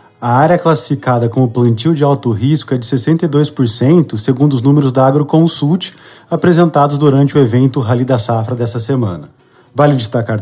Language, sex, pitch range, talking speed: Portuguese, male, 125-150 Hz, 155 wpm